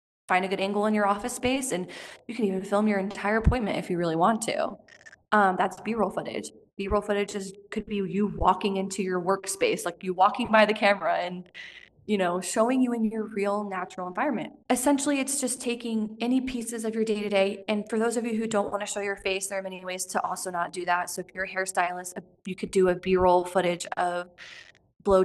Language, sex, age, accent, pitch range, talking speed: English, female, 20-39, American, 180-220 Hz, 220 wpm